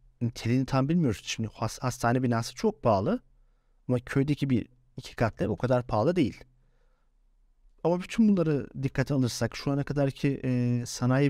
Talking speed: 145 wpm